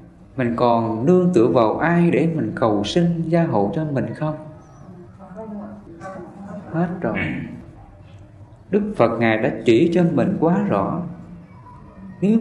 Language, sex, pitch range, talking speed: English, male, 115-180 Hz, 130 wpm